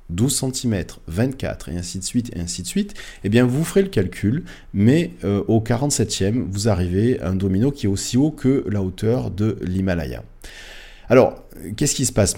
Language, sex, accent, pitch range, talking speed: French, male, French, 95-120 Hz, 205 wpm